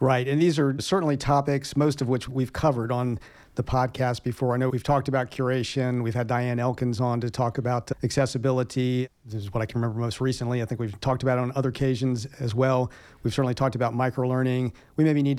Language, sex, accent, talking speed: English, male, American, 220 wpm